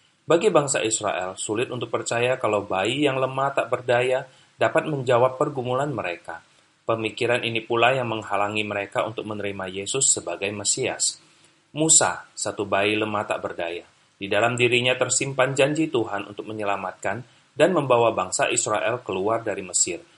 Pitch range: 110-135 Hz